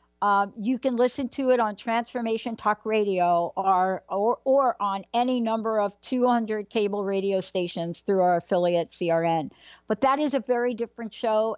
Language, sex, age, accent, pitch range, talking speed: English, female, 60-79, American, 180-235 Hz, 165 wpm